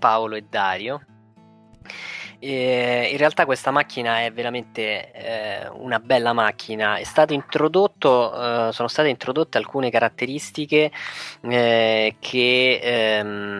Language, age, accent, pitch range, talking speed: Italian, 20-39, native, 110-130 Hz, 110 wpm